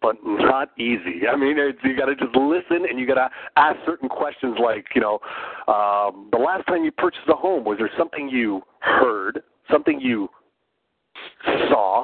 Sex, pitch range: male, 120-145 Hz